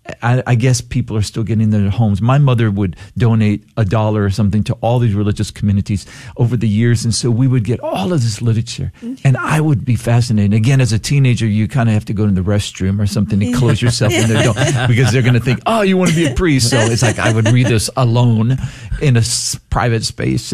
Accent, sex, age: American, male, 50-69